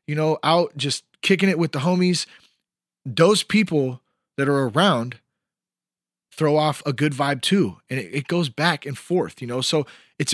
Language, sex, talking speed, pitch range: English, male, 175 wpm, 95-150 Hz